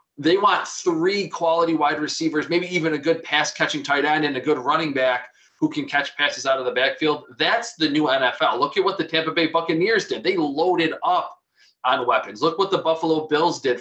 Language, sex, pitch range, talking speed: English, male, 145-180 Hz, 215 wpm